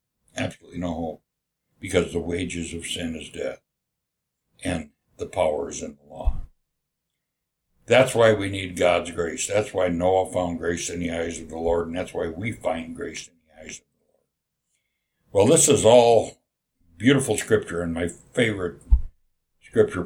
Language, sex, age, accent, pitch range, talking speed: English, male, 60-79, American, 85-110 Hz, 170 wpm